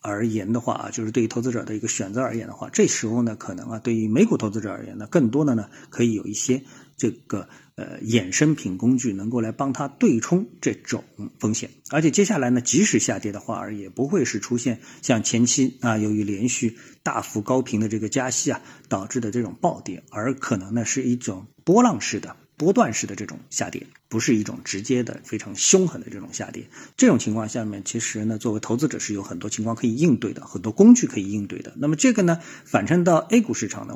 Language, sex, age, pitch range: Chinese, male, 50-69, 110-155 Hz